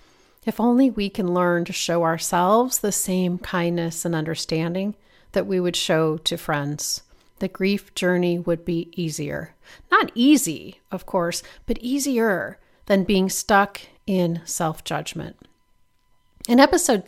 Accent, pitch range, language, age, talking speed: American, 175-225 Hz, English, 40-59, 135 wpm